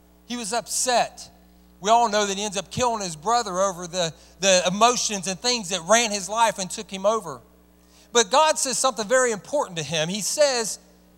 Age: 40-59